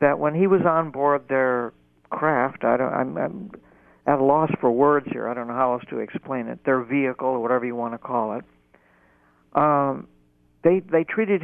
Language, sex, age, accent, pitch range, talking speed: English, male, 60-79, American, 115-155 Hz, 205 wpm